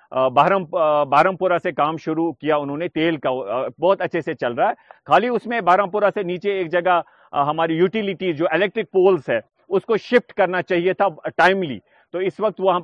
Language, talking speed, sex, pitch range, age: Urdu, 190 wpm, male, 155-190 Hz, 40-59